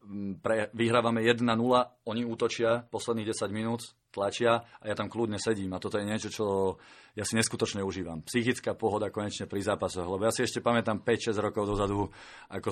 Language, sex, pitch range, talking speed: Slovak, male, 95-115 Hz, 175 wpm